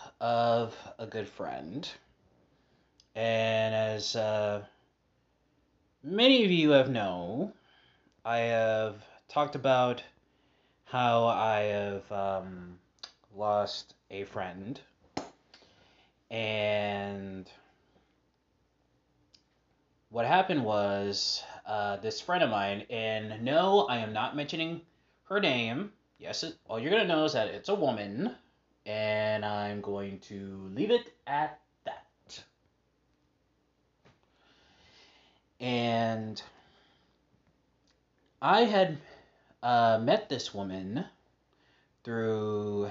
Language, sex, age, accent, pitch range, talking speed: English, male, 30-49, American, 100-120 Hz, 90 wpm